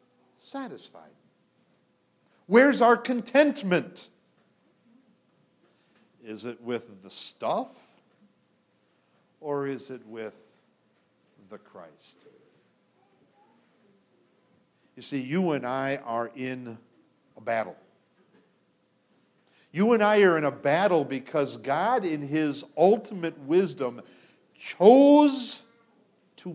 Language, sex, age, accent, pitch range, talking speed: English, male, 50-69, American, 160-250 Hz, 90 wpm